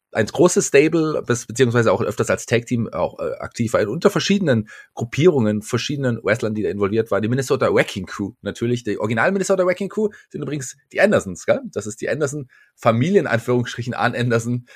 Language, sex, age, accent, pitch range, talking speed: German, male, 30-49, German, 100-130 Hz, 170 wpm